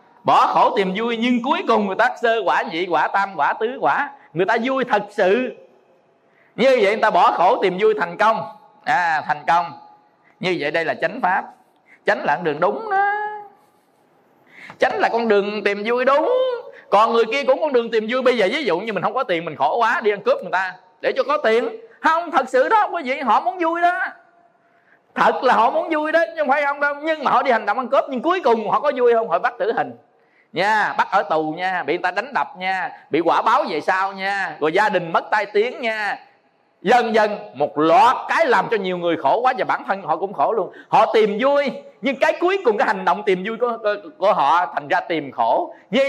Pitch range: 205-320 Hz